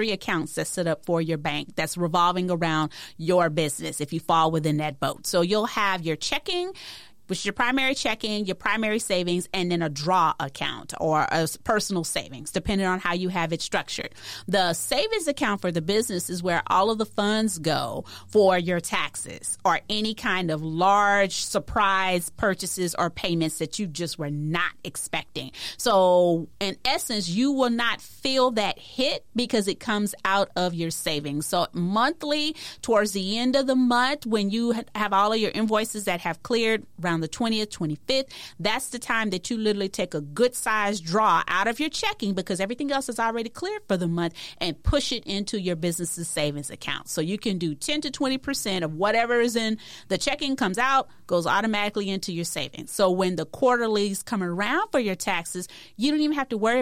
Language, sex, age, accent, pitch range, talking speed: English, female, 30-49, American, 175-230 Hz, 195 wpm